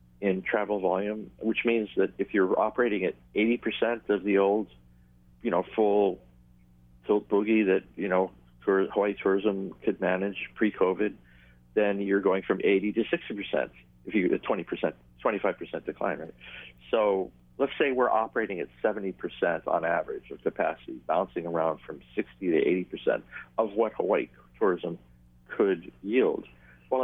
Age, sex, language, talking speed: 50-69, male, English, 145 wpm